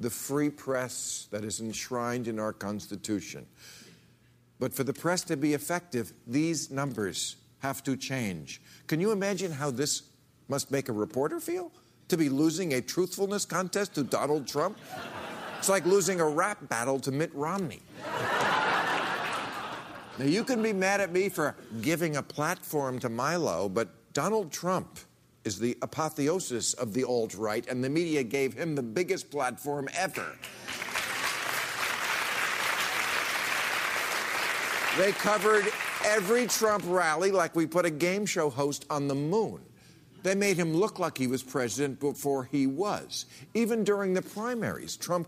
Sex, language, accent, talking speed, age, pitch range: male, English, American, 145 wpm, 50-69, 130-185 Hz